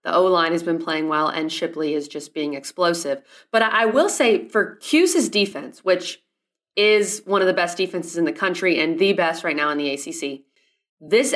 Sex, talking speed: female, 200 wpm